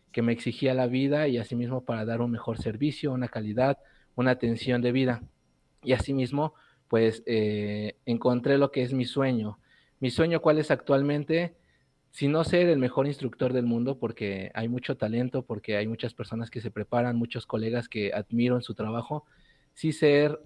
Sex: male